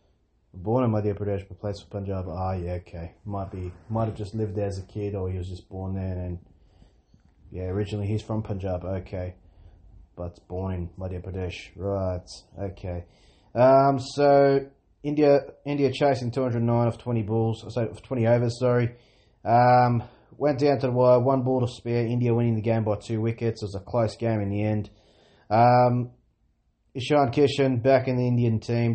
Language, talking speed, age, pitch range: English, 185 wpm, 20-39, 100-120 Hz